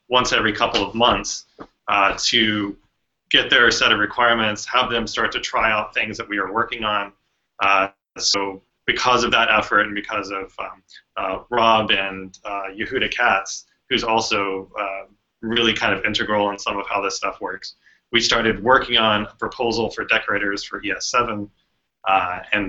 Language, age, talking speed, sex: English, 30-49, 175 wpm, male